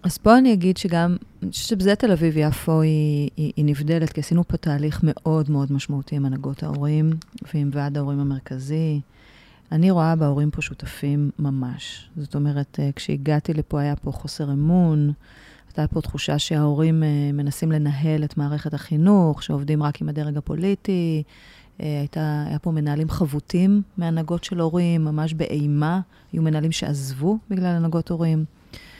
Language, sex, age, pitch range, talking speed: Hebrew, female, 30-49, 145-165 Hz, 150 wpm